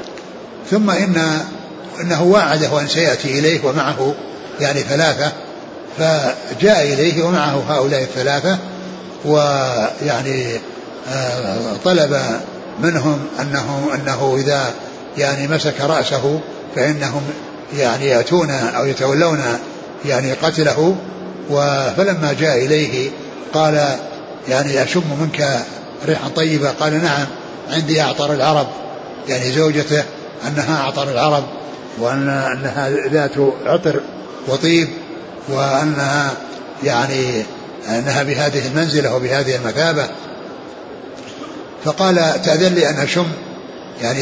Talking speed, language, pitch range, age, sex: 90 wpm, Arabic, 140-165 Hz, 60-79, male